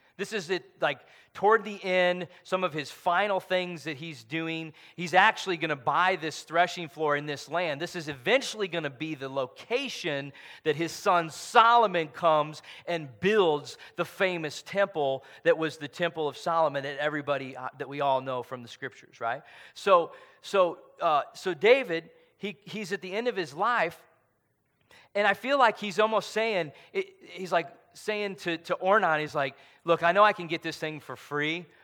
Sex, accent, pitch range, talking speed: male, American, 140-185 Hz, 190 wpm